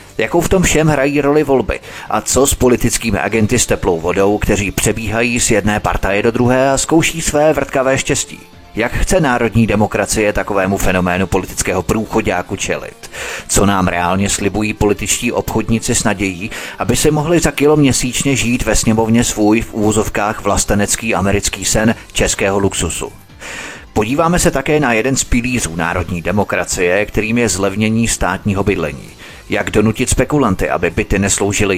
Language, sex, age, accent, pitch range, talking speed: Czech, male, 30-49, native, 100-125 Hz, 155 wpm